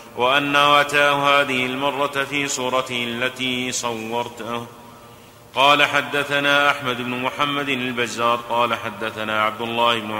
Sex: male